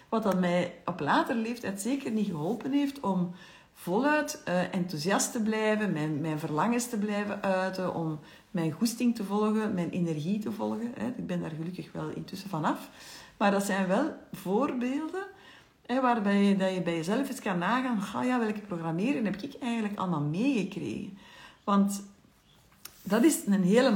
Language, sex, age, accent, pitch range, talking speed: Dutch, female, 60-79, Dutch, 180-240 Hz, 170 wpm